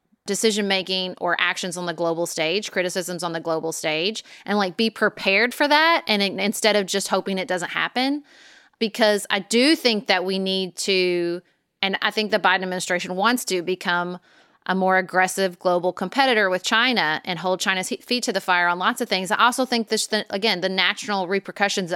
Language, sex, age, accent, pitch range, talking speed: English, female, 30-49, American, 185-255 Hz, 195 wpm